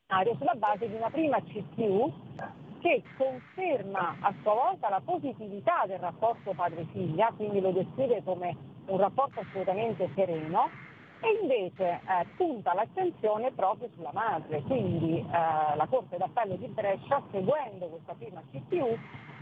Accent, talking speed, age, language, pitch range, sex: native, 135 wpm, 40-59, Italian, 175-230 Hz, female